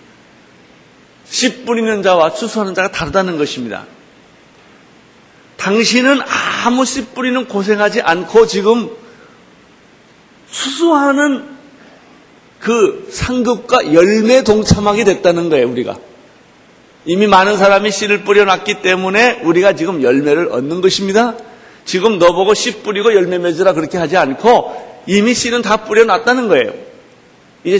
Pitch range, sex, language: 145-230 Hz, male, Korean